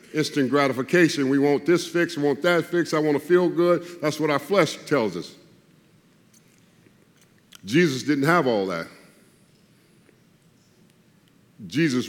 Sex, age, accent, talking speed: male, 50-69, American, 135 wpm